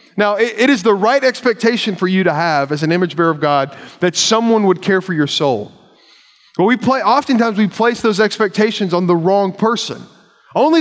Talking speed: 190 wpm